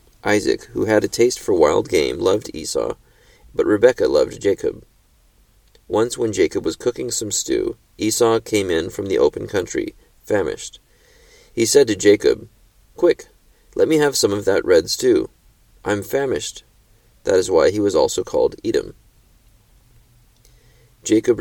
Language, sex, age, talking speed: English, male, 30-49, 150 wpm